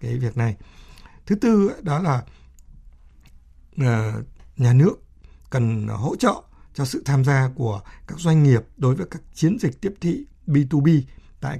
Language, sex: Vietnamese, male